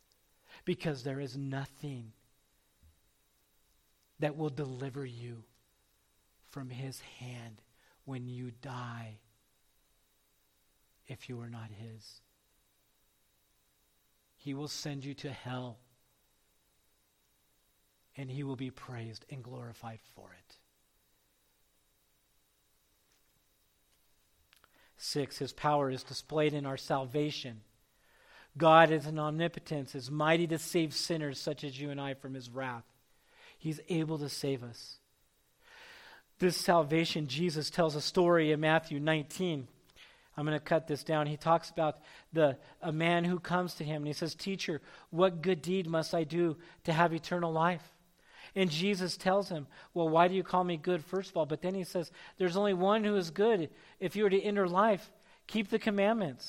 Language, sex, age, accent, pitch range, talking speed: English, male, 50-69, American, 105-165 Hz, 145 wpm